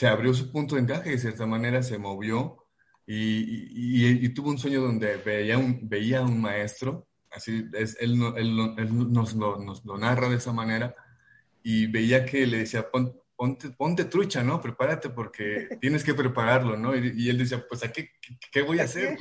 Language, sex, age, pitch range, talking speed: English, male, 30-49, 110-130 Hz, 210 wpm